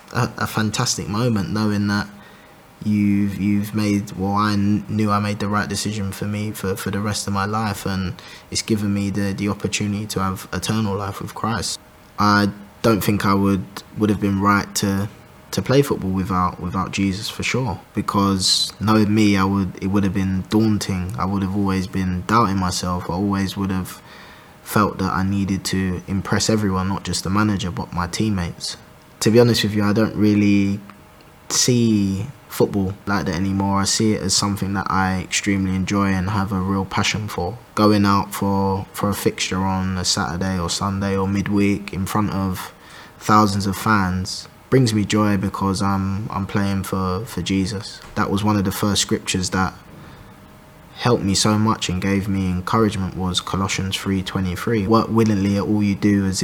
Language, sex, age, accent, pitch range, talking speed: English, male, 20-39, British, 95-105 Hz, 185 wpm